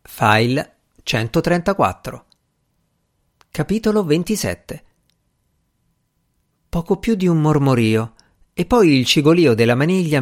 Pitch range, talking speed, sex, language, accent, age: 115-165 Hz, 90 wpm, male, Italian, native, 50-69